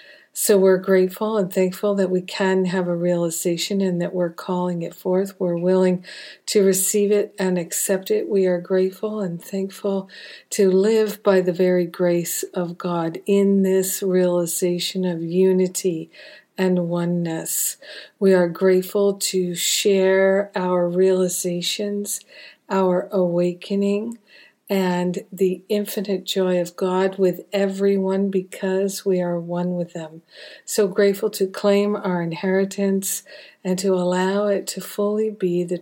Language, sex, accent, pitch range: English, female, American, 175-200 Hz